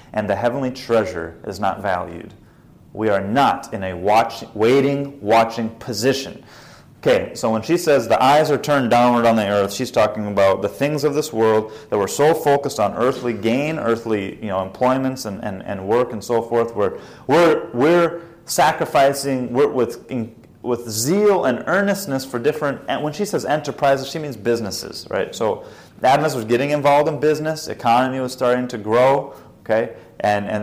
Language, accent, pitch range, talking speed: English, American, 110-140 Hz, 170 wpm